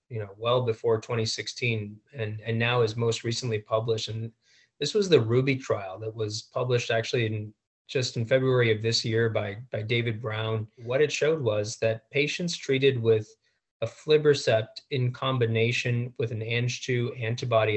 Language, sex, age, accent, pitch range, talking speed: English, male, 20-39, American, 110-130 Hz, 165 wpm